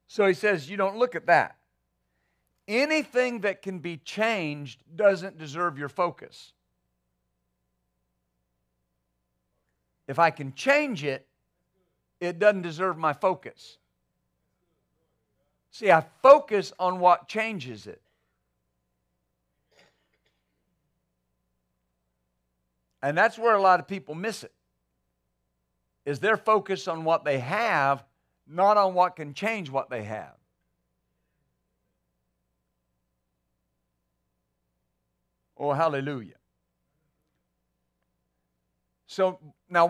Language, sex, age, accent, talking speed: English, male, 50-69, American, 95 wpm